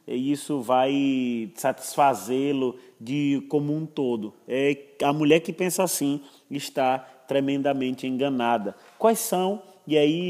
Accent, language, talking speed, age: Brazilian, Portuguese, 115 wpm, 20-39